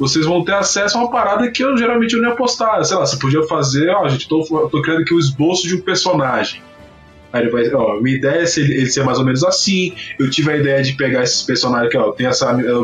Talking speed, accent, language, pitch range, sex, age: 260 wpm, Brazilian, Portuguese, 130-190 Hz, male, 20-39